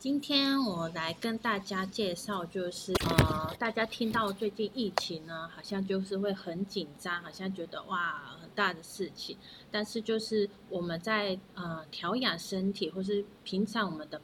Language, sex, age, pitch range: Chinese, female, 30-49, 170-215 Hz